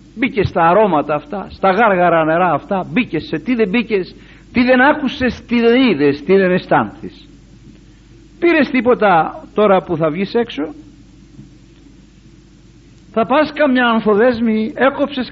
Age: 50-69